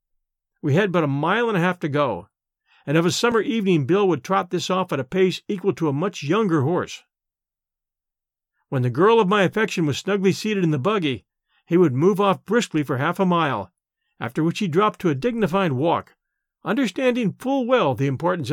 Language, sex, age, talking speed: English, male, 50-69, 205 wpm